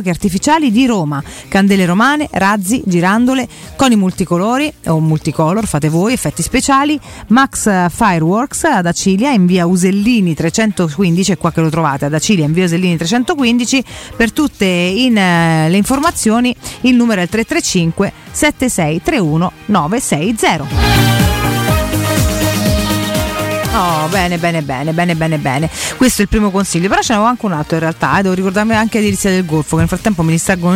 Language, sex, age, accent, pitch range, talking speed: Italian, female, 40-59, native, 175-240 Hz, 150 wpm